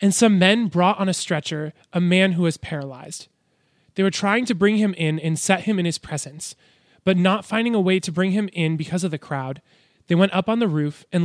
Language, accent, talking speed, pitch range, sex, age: English, American, 240 wpm, 155-195 Hz, male, 20-39